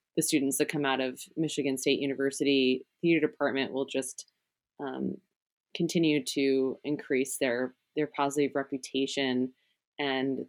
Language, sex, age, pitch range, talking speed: English, female, 20-39, 130-145 Hz, 125 wpm